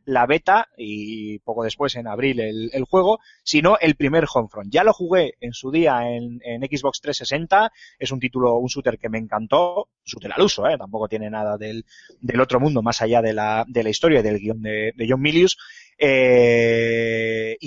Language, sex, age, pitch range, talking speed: Spanish, male, 30-49, 115-150 Hz, 200 wpm